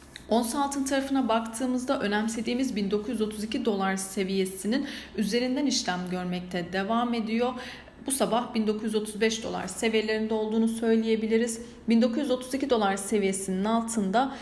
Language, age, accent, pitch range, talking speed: Turkish, 40-59, native, 195-245 Hz, 95 wpm